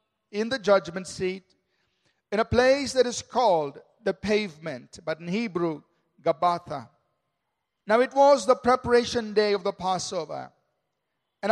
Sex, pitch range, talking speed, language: male, 170-240 Hz, 135 wpm, English